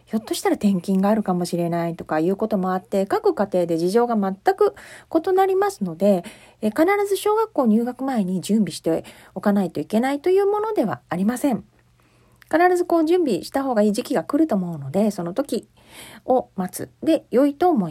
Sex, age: female, 40-59